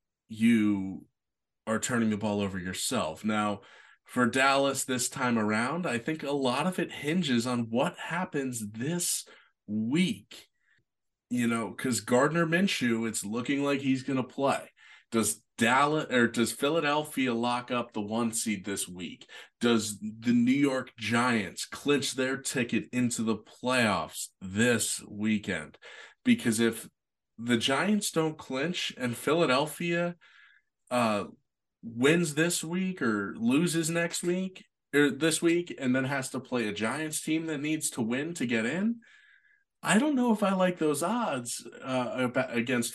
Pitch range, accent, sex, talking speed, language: 115-160 Hz, American, male, 150 wpm, English